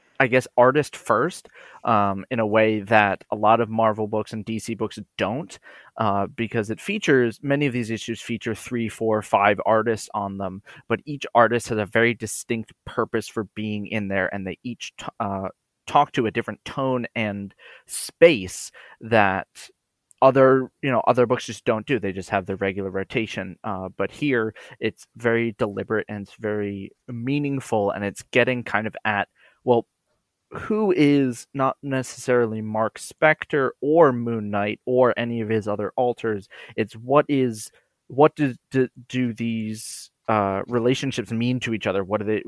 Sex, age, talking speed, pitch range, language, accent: male, 20-39, 170 wpm, 105-125 Hz, English, American